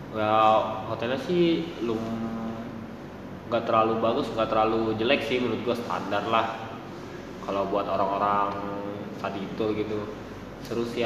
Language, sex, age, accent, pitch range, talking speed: Indonesian, male, 20-39, native, 105-115 Hz, 130 wpm